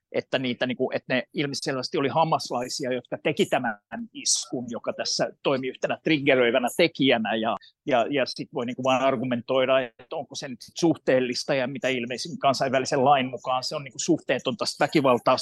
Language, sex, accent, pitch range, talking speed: Finnish, male, native, 125-160 Hz, 150 wpm